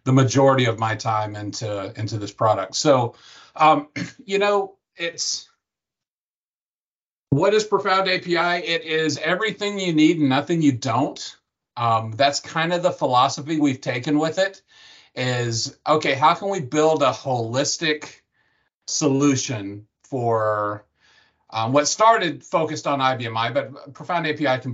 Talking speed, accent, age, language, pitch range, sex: 140 wpm, American, 40-59, English, 115-150 Hz, male